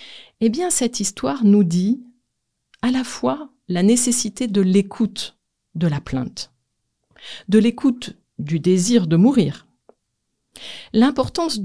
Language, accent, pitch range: French, French, 170-230 Hz